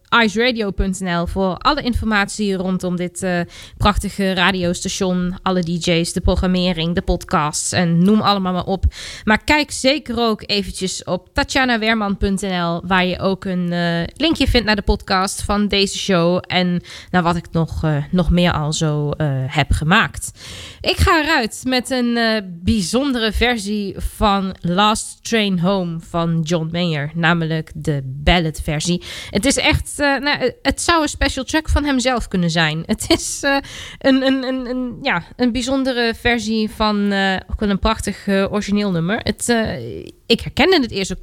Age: 20-39